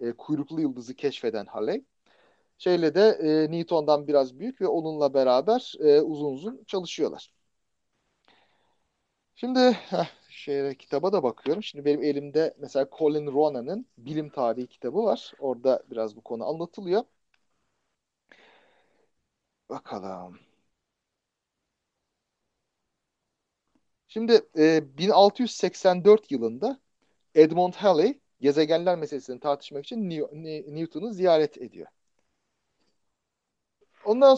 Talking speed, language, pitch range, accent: 95 wpm, Turkish, 150-215 Hz, native